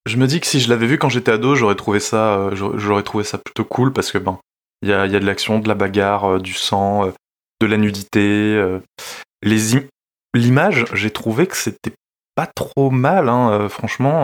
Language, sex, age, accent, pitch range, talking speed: French, male, 20-39, French, 100-115 Hz, 230 wpm